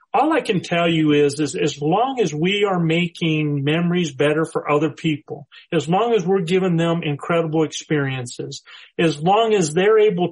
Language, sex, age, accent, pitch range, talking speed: English, male, 40-59, American, 155-190 Hz, 180 wpm